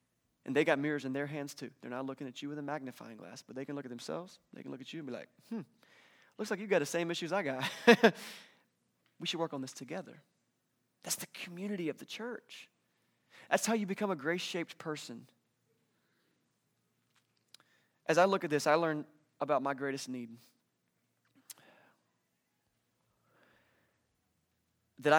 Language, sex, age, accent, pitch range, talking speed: English, male, 20-39, American, 130-160 Hz, 175 wpm